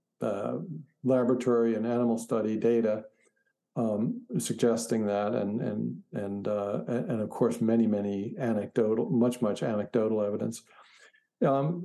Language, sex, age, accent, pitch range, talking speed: English, male, 50-69, American, 115-130 Hz, 120 wpm